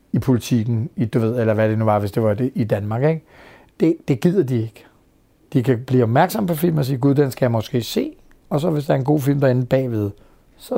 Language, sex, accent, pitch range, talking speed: Danish, male, native, 115-140 Hz, 255 wpm